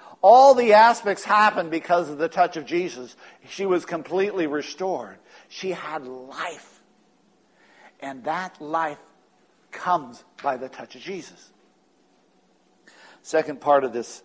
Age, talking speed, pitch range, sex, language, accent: 60-79, 125 wpm, 120-160 Hz, male, English, American